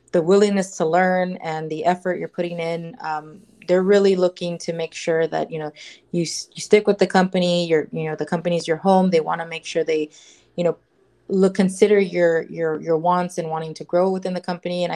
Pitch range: 165-185 Hz